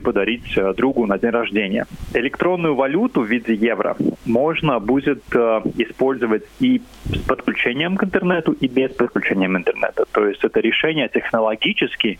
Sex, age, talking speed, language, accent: male, 20-39, 140 wpm, Russian, native